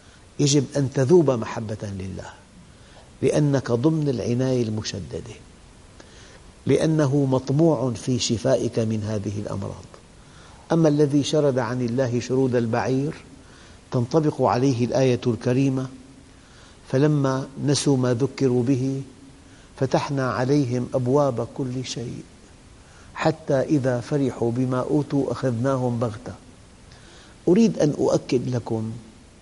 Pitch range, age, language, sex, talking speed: 110-135 Hz, 50-69, English, male, 100 wpm